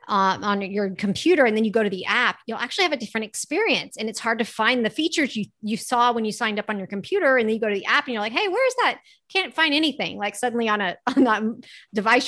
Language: English